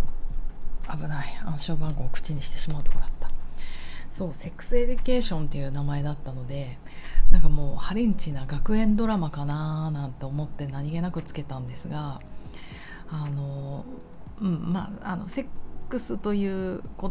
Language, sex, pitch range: Japanese, female, 140-195 Hz